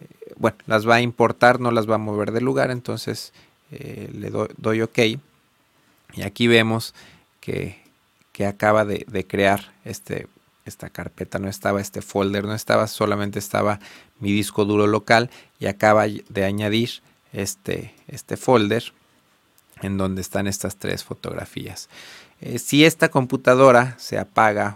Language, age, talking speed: Spanish, 40-59, 145 wpm